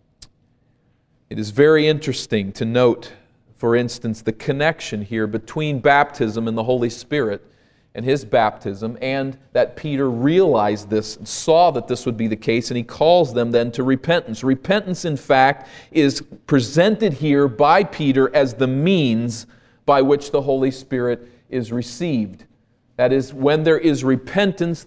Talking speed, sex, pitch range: 150 wpm, male, 120-145 Hz